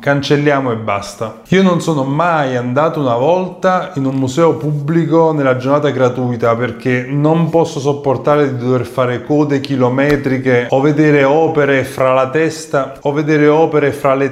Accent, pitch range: native, 125-150 Hz